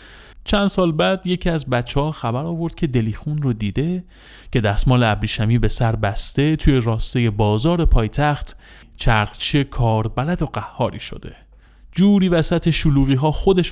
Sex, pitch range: male, 110-145 Hz